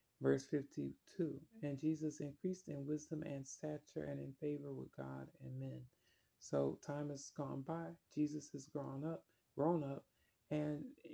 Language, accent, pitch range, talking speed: English, American, 135-160 Hz, 150 wpm